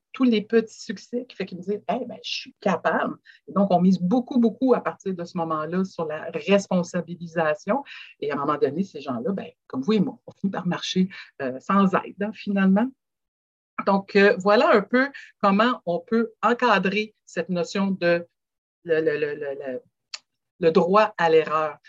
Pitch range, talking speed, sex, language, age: 180-230 Hz, 195 wpm, female, French, 60-79